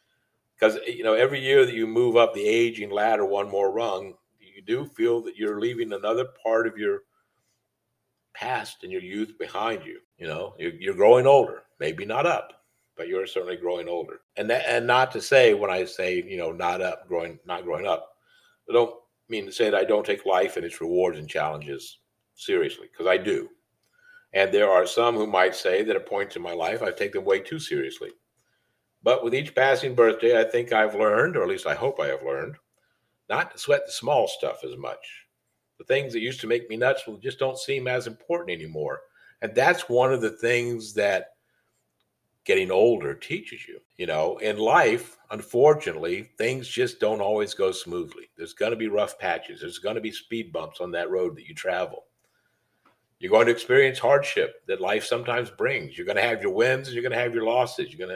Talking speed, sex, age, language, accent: 210 wpm, male, 60-79, English, American